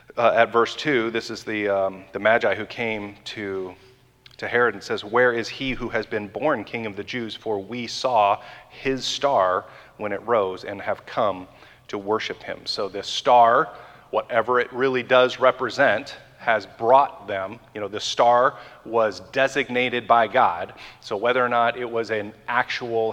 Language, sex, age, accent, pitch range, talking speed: English, male, 30-49, American, 105-125 Hz, 180 wpm